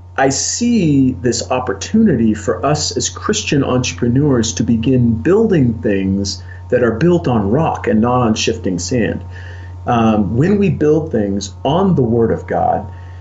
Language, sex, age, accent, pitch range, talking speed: English, male, 40-59, American, 95-135 Hz, 150 wpm